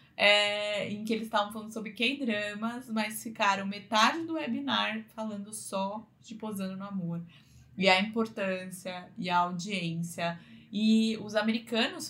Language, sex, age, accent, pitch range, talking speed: Portuguese, female, 20-39, Brazilian, 190-245 Hz, 135 wpm